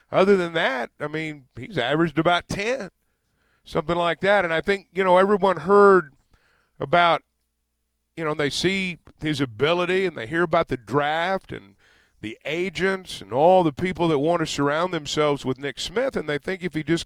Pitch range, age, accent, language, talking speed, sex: 140-175 Hz, 50-69, American, English, 185 wpm, male